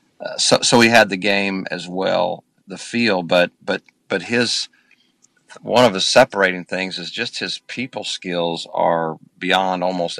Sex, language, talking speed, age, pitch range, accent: male, English, 165 wpm, 50-69, 85-100 Hz, American